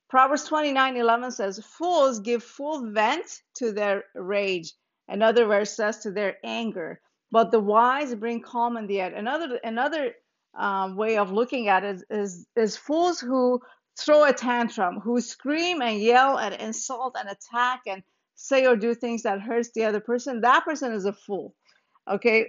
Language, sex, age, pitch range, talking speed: English, female, 50-69, 210-260 Hz, 180 wpm